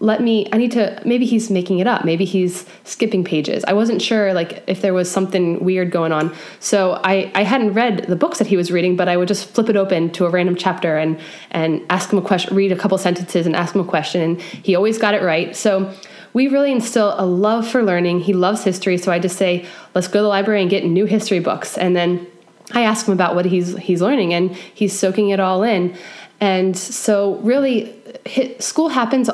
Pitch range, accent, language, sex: 185-215 Hz, American, English, female